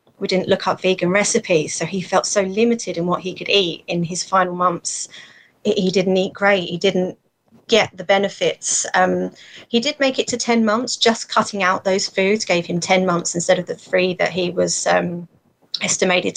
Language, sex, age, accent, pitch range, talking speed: English, female, 30-49, British, 175-205 Hz, 200 wpm